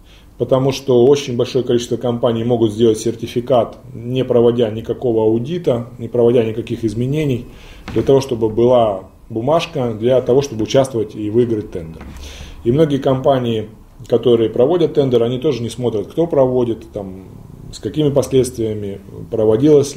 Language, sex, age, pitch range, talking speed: Russian, male, 20-39, 110-130 Hz, 140 wpm